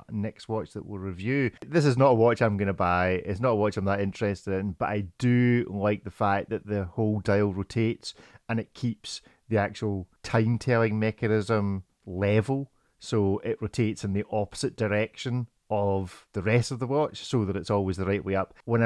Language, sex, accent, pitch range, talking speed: English, male, British, 100-130 Hz, 200 wpm